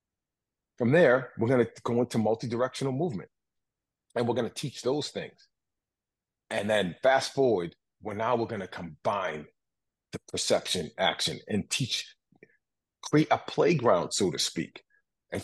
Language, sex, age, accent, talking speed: English, male, 40-59, American, 135 wpm